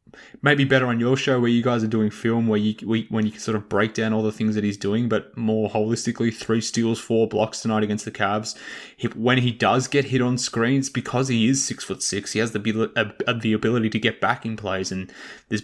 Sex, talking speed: male, 250 wpm